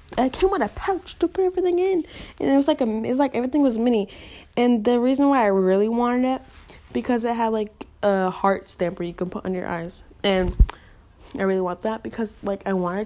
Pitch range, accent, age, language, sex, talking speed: 180-245 Hz, American, 10-29, English, female, 235 wpm